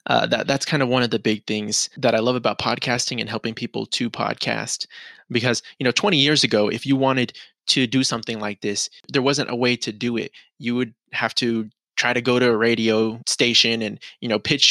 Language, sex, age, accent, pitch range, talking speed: English, male, 20-39, American, 115-140 Hz, 230 wpm